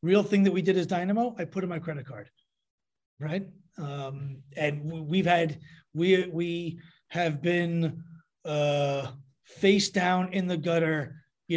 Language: English